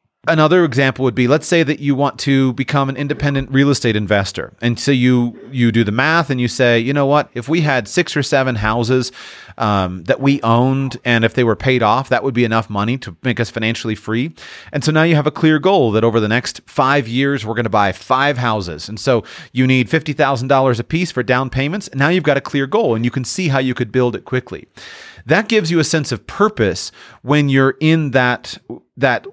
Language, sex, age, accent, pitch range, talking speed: English, male, 30-49, American, 115-145 Hz, 235 wpm